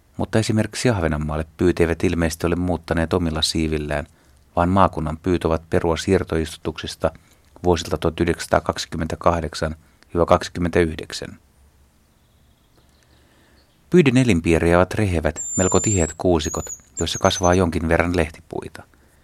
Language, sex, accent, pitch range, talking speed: Finnish, male, native, 80-90 Hz, 85 wpm